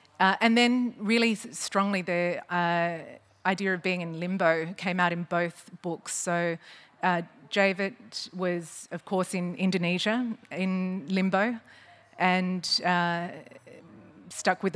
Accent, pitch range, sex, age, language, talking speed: Australian, 175-195 Hz, female, 30-49, English, 125 wpm